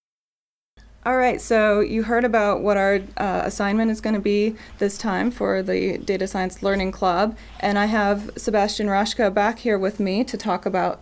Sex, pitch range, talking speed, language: female, 200-225 Hz, 185 wpm, English